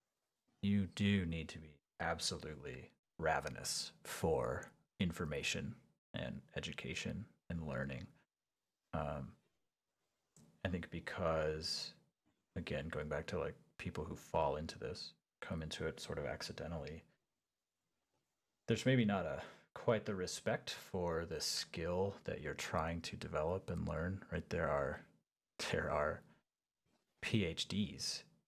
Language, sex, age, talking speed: English, male, 30-49, 120 wpm